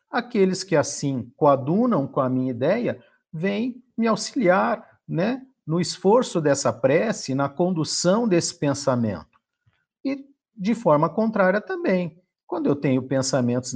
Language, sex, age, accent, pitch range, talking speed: Portuguese, male, 50-69, Brazilian, 140-225 Hz, 125 wpm